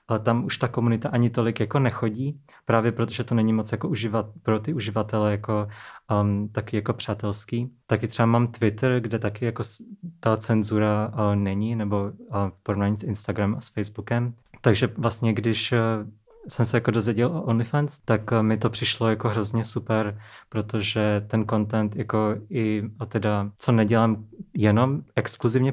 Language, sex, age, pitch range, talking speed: Czech, male, 20-39, 105-115 Hz, 170 wpm